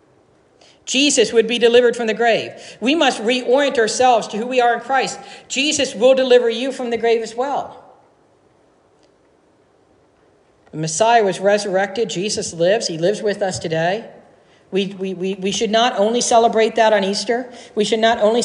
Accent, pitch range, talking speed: American, 190-240 Hz, 165 wpm